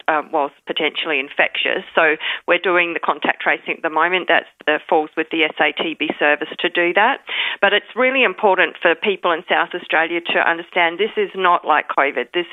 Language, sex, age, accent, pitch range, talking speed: English, female, 40-59, Australian, 165-205 Hz, 195 wpm